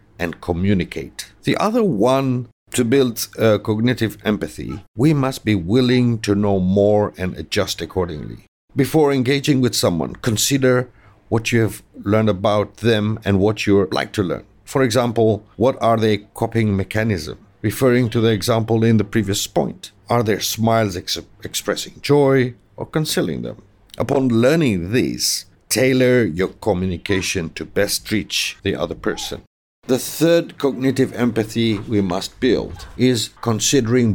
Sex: male